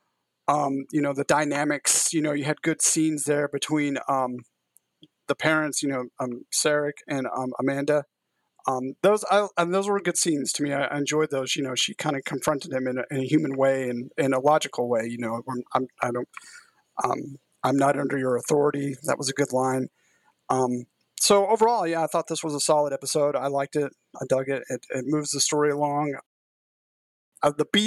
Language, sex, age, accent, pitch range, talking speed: English, male, 30-49, American, 135-165 Hz, 210 wpm